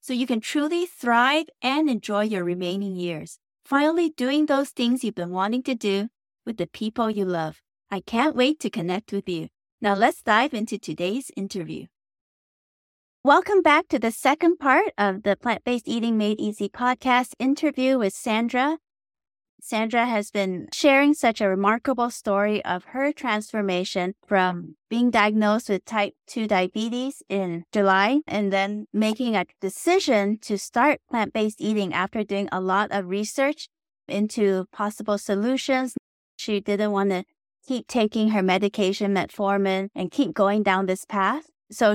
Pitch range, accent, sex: 195-250 Hz, American, female